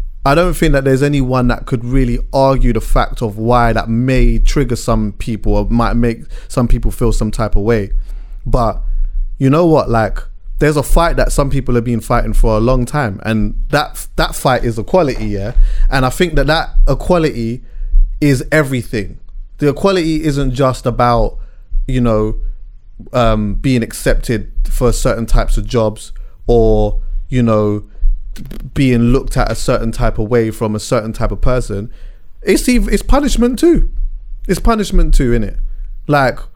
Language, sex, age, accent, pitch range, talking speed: English, male, 20-39, British, 110-145 Hz, 170 wpm